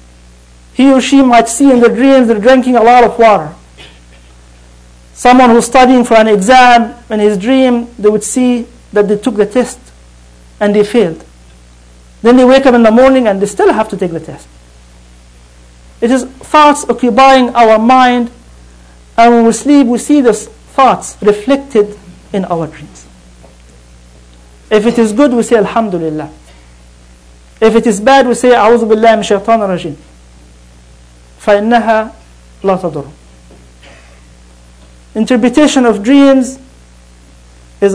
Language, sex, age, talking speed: English, male, 50-69, 140 wpm